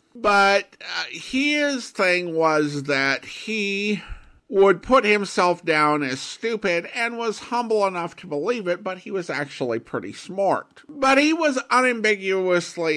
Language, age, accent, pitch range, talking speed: English, 50-69, American, 145-215 Hz, 140 wpm